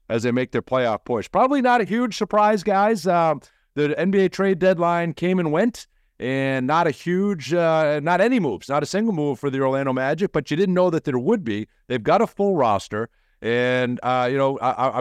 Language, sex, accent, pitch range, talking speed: English, male, American, 125-175 Hz, 215 wpm